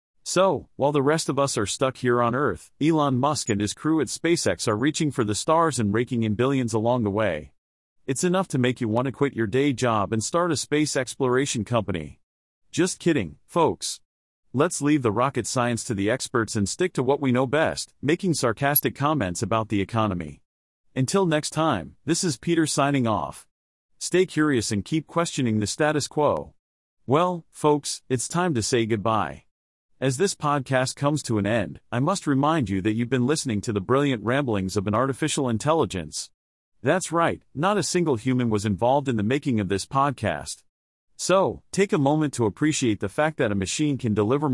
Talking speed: 195 wpm